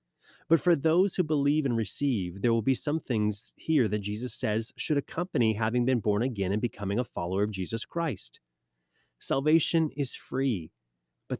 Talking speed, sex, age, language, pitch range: 175 wpm, male, 30-49, English, 105-150 Hz